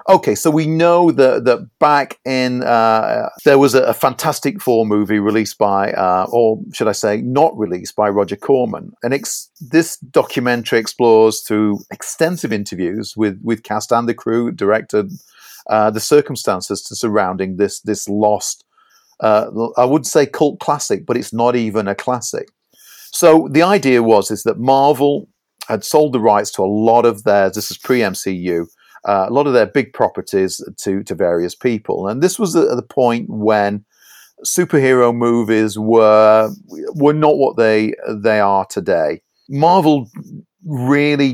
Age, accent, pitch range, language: 40-59, British, 105-130 Hz, English